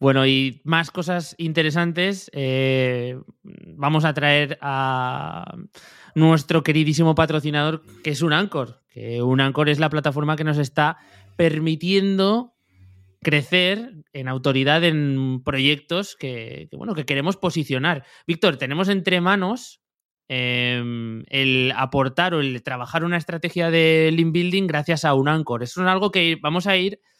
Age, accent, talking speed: 20-39, Spanish, 130 wpm